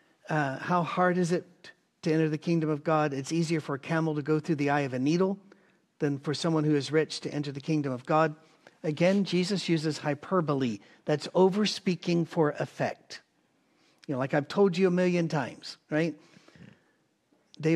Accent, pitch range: American, 150-180 Hz